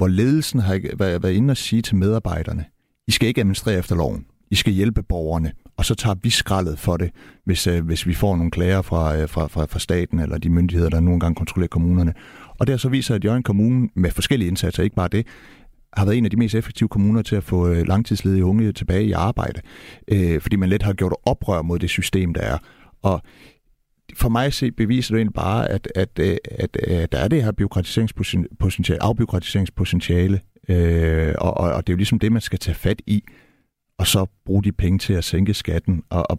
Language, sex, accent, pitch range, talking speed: Danish, male, native, 90-110 Hz, 215 wpm